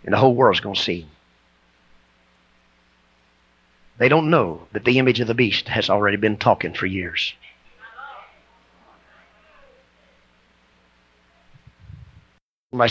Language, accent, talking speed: English, American, 105 wpm